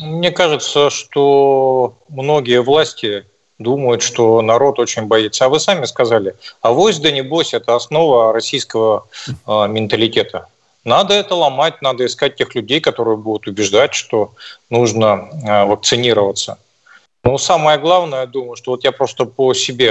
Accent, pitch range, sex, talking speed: native, 120-180 Hz, male, 140 wpm